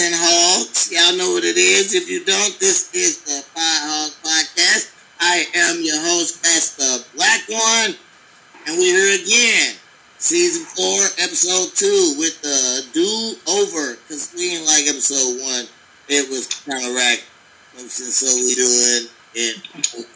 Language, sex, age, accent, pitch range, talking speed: English, male, 30-49, American, 135-175 Hz, 150 wpm